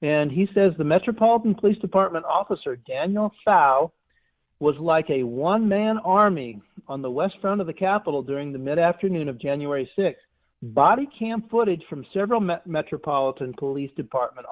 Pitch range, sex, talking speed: 140-195 Hz, male, 150 wpm